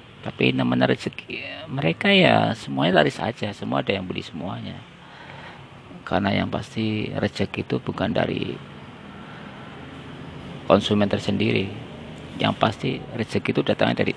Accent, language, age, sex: native, Indonesian, 40-59, male